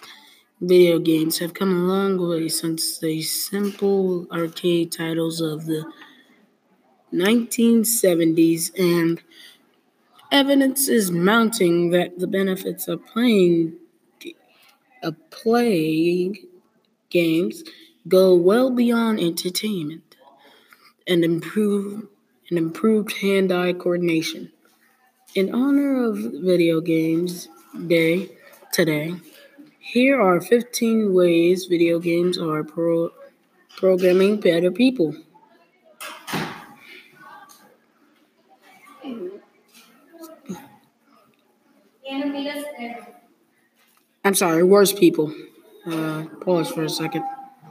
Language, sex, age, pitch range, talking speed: English, female, 20-39, 170-245 Hz, 80 wpm